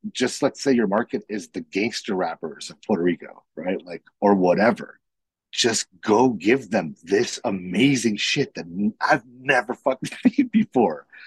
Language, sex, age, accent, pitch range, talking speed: English, male, 40-59, American, 90-120 Hz, 155 wpm